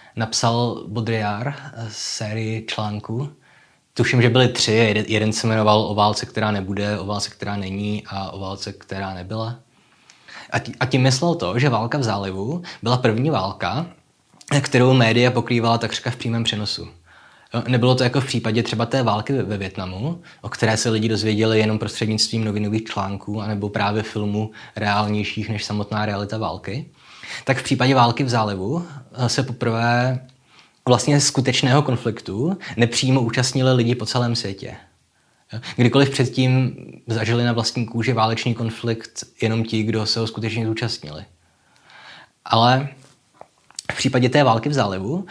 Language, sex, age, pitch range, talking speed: Czech, male, 20-39, 110-130 Hz, 145 wpm